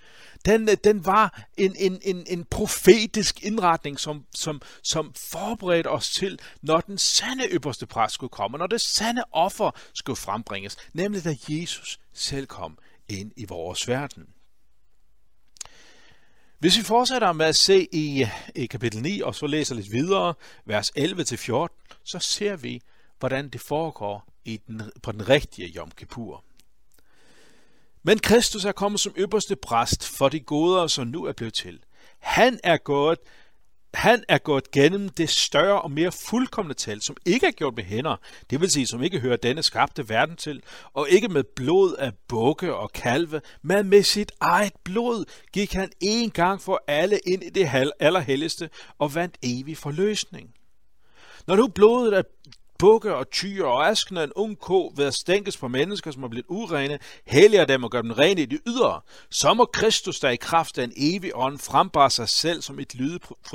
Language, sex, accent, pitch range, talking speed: Danish, male, native, 130-195 Hz, 175 wpm